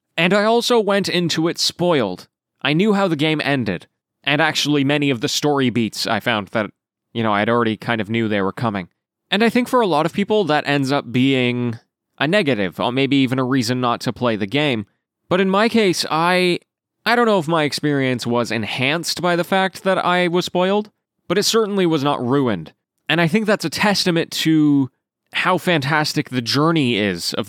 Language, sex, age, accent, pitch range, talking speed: English, male, 20-39, American, 120-170 Hz, 210 wpm